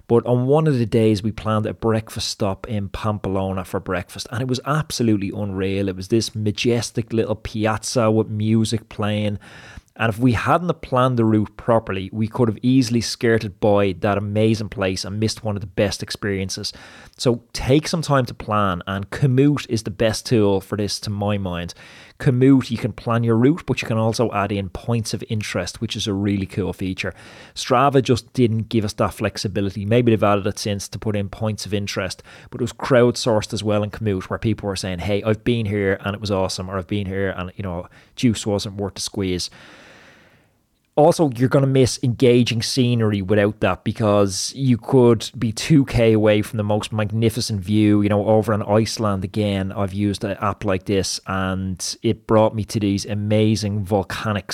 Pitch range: 100-120 Hz